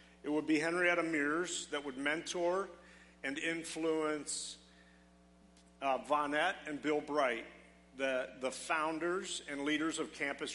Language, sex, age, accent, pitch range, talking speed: English, male, 50-69, American, 135-165 Hz, 125 wpm